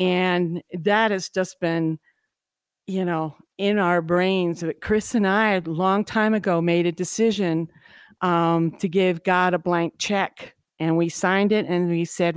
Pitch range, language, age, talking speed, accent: 175-210 Hz, English, 50-69, 165 wpm, American